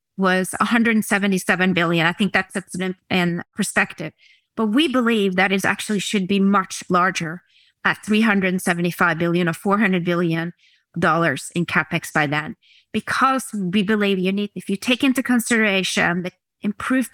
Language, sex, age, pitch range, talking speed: English, female, 30-49, 180-220 Hz, 140 wpm